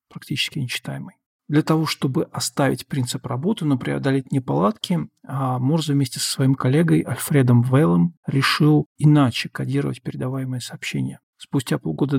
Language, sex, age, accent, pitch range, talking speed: Russian, male, 50-69, native, 130-155 Hz, 125 wpm